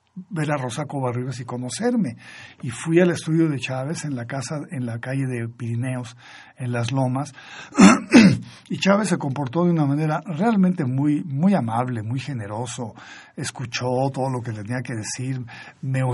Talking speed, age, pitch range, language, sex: 165 wpm, 50-69, 125-155 Hz, Spanish, male